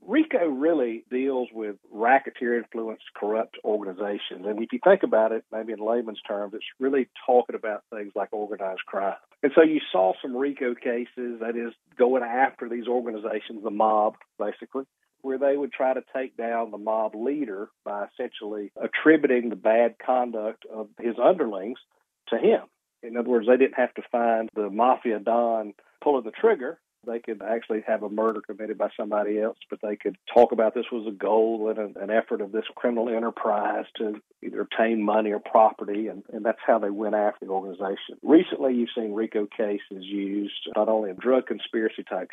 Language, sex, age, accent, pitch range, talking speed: English, male, 50-69, American, 105-120 Hz, 180 wpm